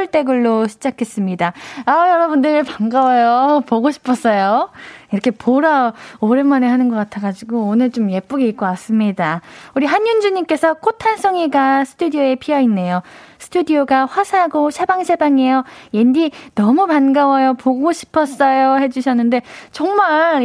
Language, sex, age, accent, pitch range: Korean, female, 20-39, native, 220-315 Hz